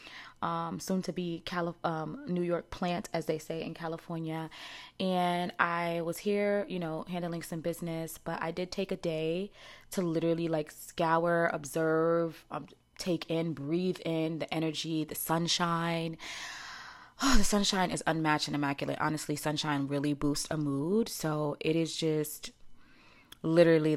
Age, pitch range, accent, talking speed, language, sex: 20-39, 145-165 Hz, American, 150 wpm, English, female